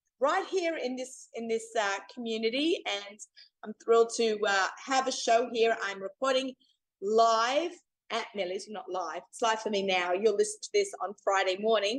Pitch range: 205-255 Hz